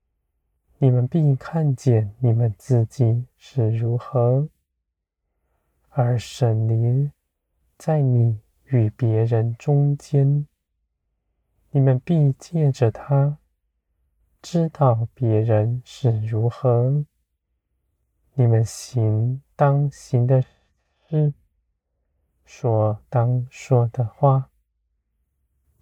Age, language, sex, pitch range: 20-39, Chinese, male, 80-130 Hz